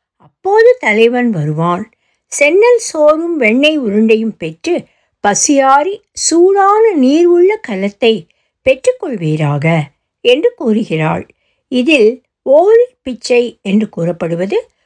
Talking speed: 90 wpm